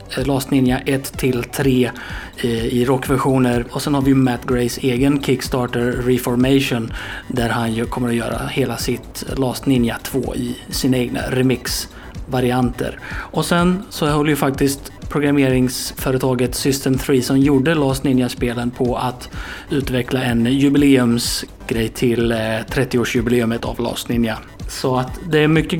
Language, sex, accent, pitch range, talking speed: Swedish, male, native, 125-145 Hz, 130 wpm